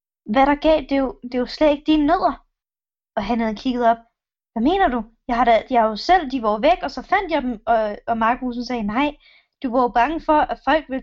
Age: 20-39